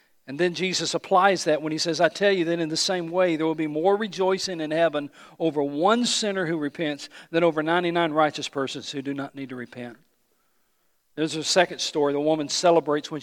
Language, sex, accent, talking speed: English, male, American, 215 wpm